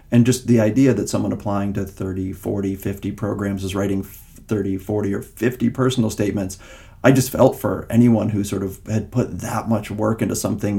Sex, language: male, English